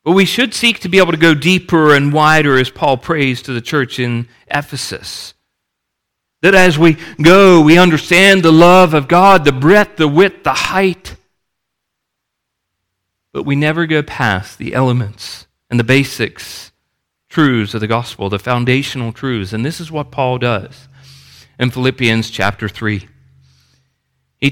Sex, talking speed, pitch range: male, 155 wpm, 110-155 Hz